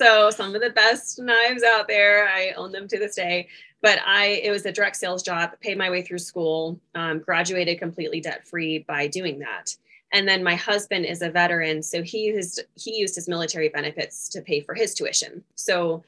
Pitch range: 160-195 Hz